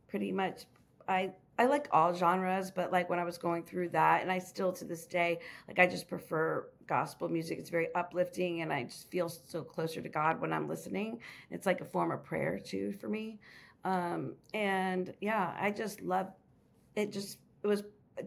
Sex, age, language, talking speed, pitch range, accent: female, 40-59, English, 200 wpm, 180-215 Hz, American